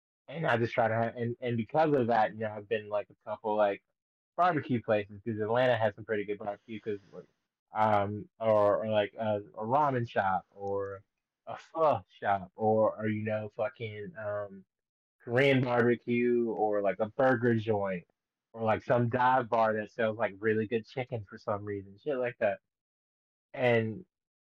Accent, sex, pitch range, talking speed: American, male, 105-120 Hz, 175 wpm